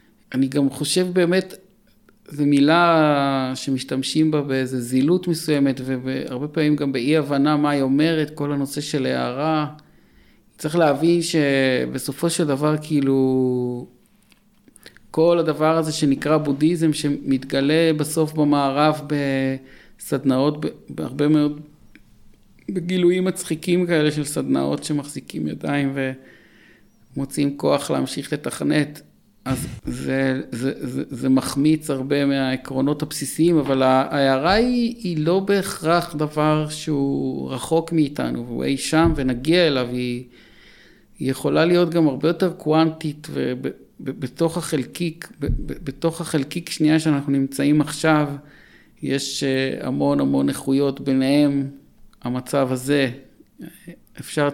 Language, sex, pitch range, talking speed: Hebrew, male, 135-155 Hz, 110 wpm